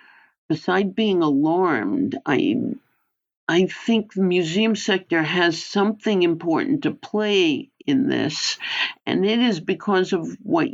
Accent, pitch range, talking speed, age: American, 170-275 Hz, 125 wpm, 60-79